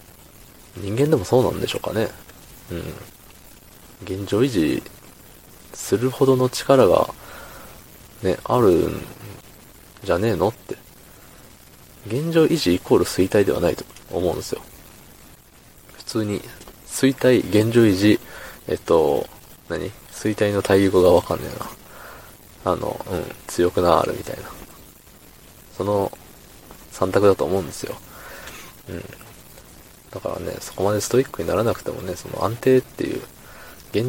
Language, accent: Japanese, native